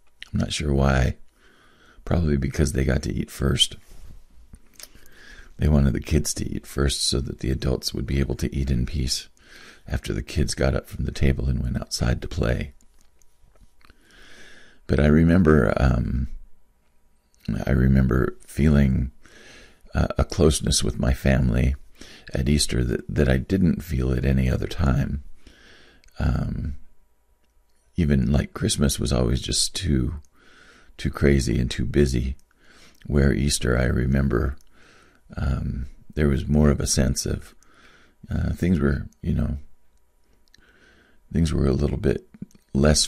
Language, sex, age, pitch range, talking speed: English, male, 40-59, 65-75 Hz, 140 wpm